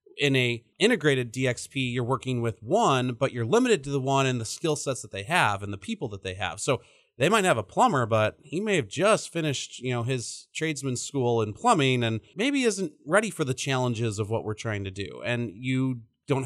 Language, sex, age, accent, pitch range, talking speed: English, male, 30-49, American, 120-165 Hz, 225 wpm